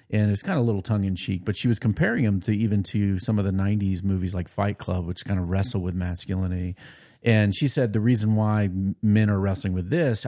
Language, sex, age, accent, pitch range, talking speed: English, male, 40-59, American, 100-135 Hz, 235 wpm